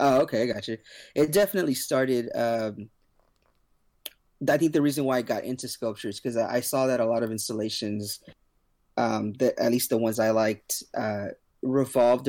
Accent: American